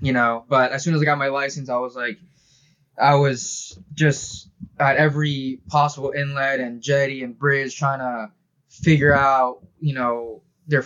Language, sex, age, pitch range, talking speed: English, male, 20-39, 125-145 Hz, 170 wpm